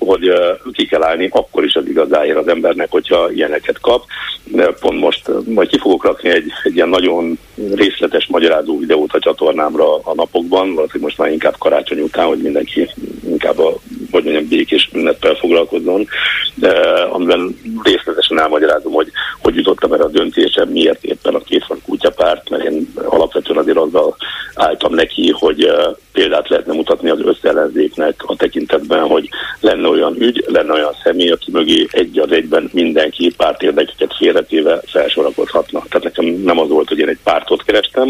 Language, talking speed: Hungarian, 155 wpm